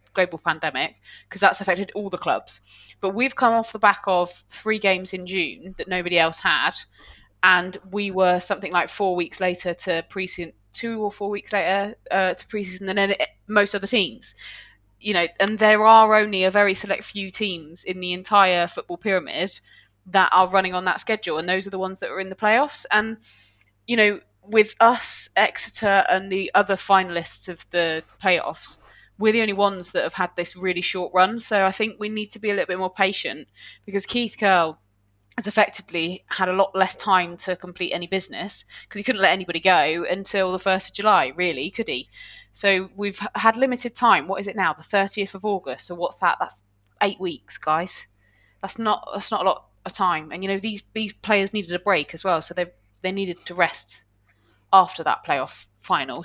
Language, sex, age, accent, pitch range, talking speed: English, female, 20-39, British, 175-205 Hz, 205 wpm